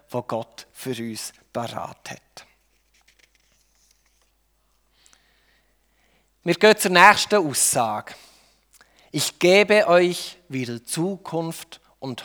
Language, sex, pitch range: German, male, 145-195 Hz